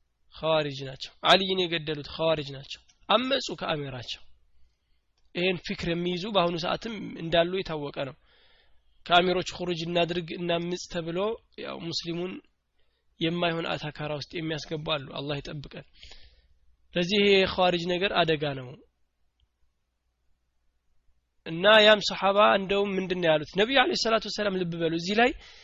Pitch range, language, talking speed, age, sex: 145-200 Hz, Amharic, 105 wpm, 20-39, male